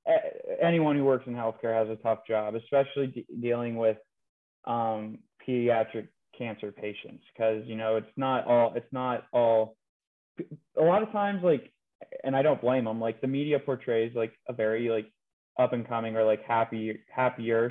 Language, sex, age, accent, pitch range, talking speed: English, male, 20-39, American, 115-135 Hz, 175 wpm